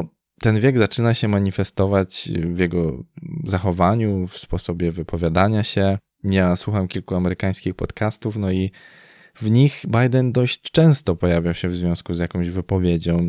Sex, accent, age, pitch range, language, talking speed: male, native, 20-39, 85-100 Hz, Polish, 140 wpm